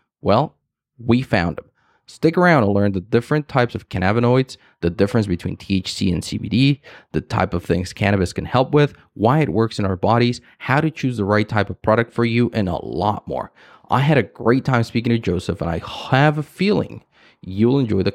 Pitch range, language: 100-135 Hz, English